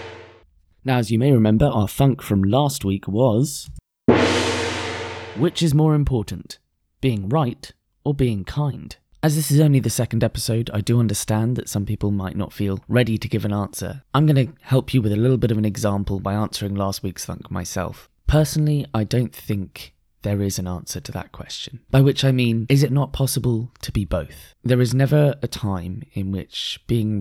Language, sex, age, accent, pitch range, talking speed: English, male, 20-39, British, 100-130 Hz, 195 wpm